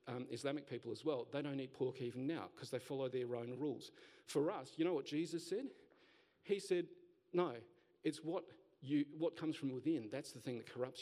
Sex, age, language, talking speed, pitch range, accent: male, 40-59, English, 210 wpm, 130-165 Hz, Australian